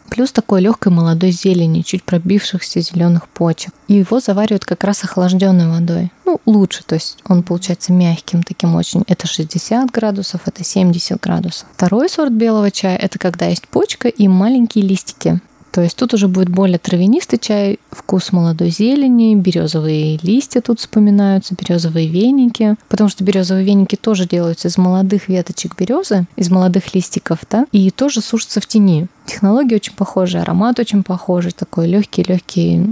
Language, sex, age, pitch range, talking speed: Russian, female, 20-39, 175-205 Hz, 155 wpm